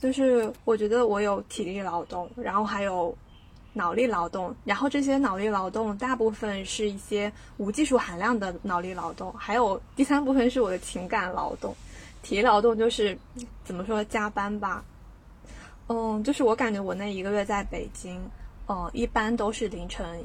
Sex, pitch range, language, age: female, 195-245 Hz, Chinese, 20-39